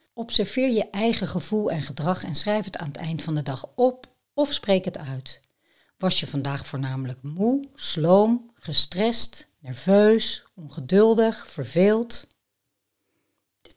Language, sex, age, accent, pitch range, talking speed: Dutch, female, 60-79, Dutch, 140-205 Hz, 135 wpm